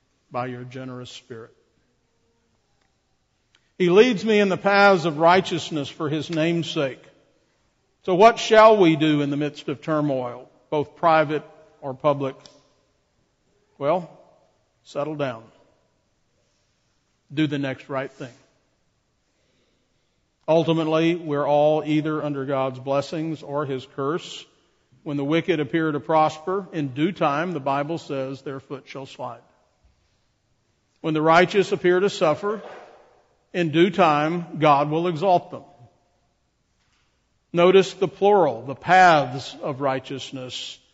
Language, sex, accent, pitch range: English, male, American, 135-175 Hz